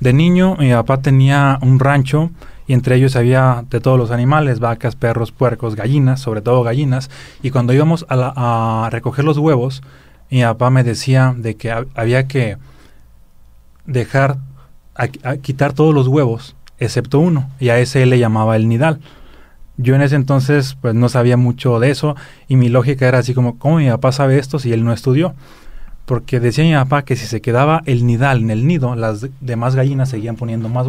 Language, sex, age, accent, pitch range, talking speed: Spanish, male, 30-49, Mexican, 120-140 Hz, 190 wpm